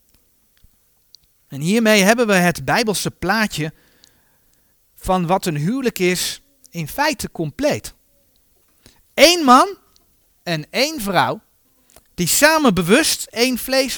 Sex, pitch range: male, 140-225 Hz